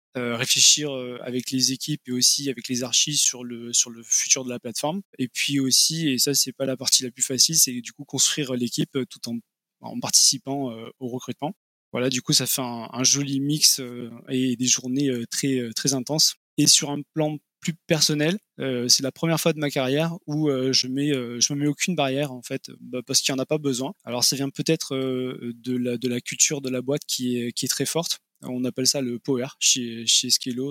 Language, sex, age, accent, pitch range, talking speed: French, male, 20-39, French, 125-145 Hz, 235 wpm